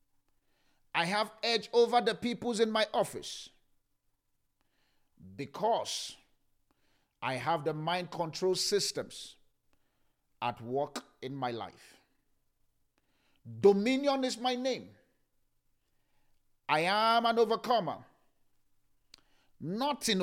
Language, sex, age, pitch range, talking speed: English, male, 50-69, 150-235 Hz, 90 wpm